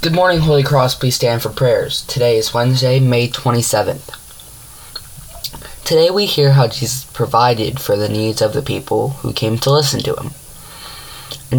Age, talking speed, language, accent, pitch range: 20-39, 165 wpm, English, American, 110-135 Hz